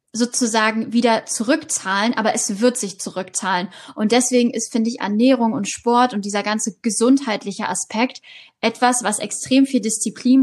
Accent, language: German, German